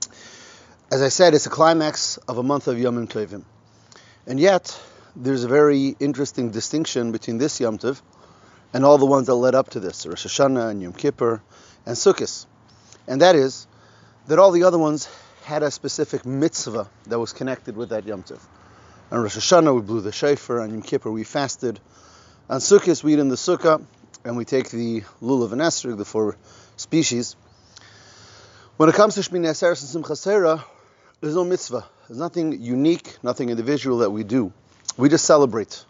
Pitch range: 110-150 Hz